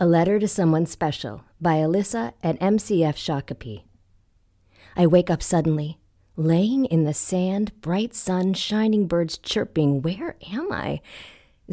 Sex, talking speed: female, 140 wpm